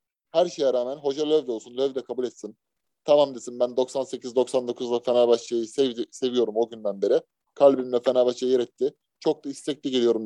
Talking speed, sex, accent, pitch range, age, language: 165 wpm, male, native, 130-180 Hz, 30-49, Turkish